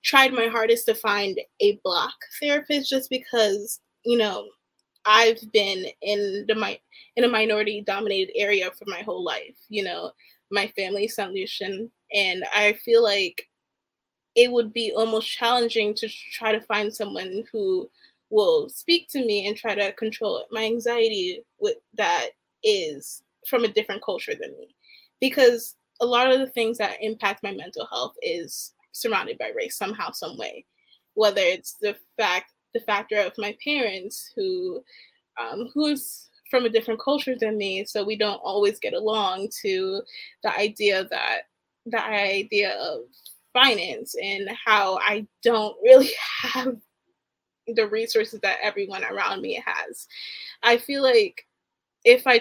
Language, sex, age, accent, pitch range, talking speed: English, female, 20-39, American, 210-295 Hz, 155 wpm